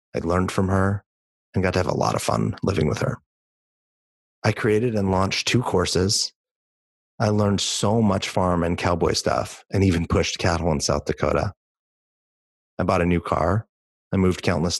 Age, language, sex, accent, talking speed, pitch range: 30-49, English, male, American, 180 wpm, 85-100 Hz